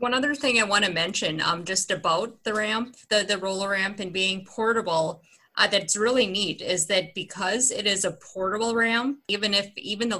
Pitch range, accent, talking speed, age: 185-220 Hz, American, 205 wpm, 30-49